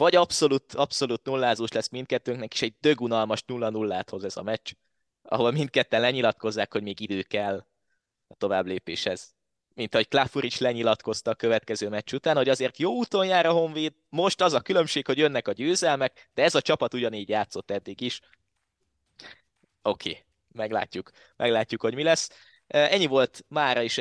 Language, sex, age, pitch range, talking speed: Hungarian, male, 20-39, 110-135 Hz, 160 wpm